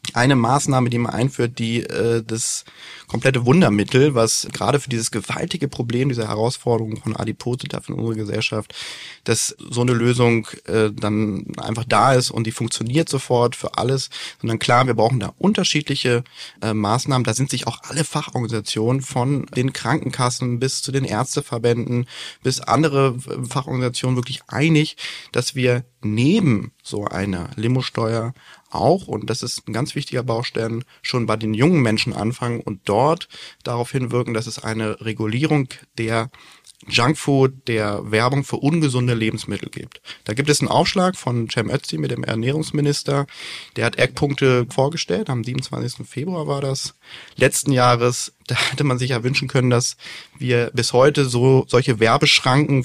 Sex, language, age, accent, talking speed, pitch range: male, German, 30-49, German, 155 wpm, 115-140 Hz